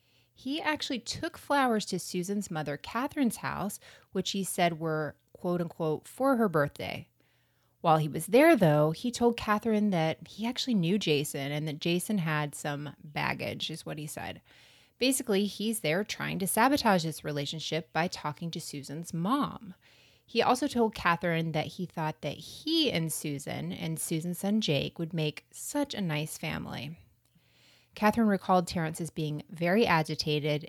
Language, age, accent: English, 30-49, American